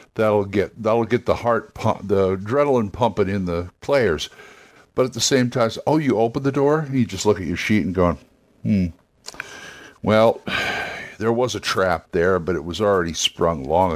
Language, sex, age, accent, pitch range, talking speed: English, male, 60-79, American, 95-125 Hz, 195 wpm